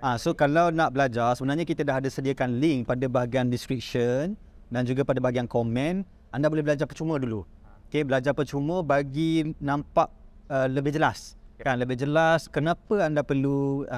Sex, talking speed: male, 165 wpm